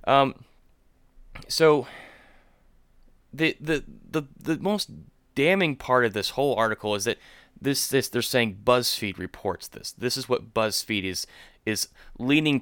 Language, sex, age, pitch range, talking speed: English, male, 20-39, 115-145 Hz, 140 wpm